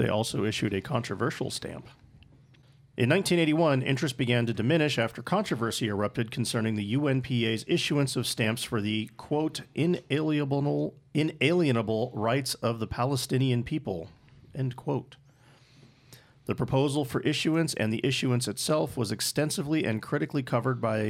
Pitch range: 110-140 Hz